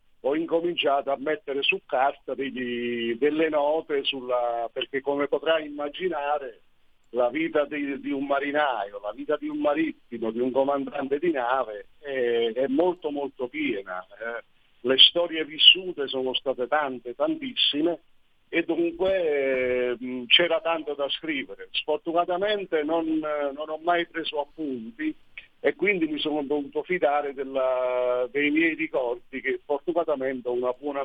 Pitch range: 135-175 Hz